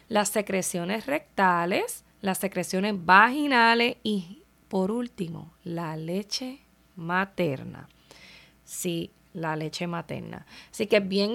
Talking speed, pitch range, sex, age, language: 105 wpm, 190-240 Hz, female, 20-39, Spanish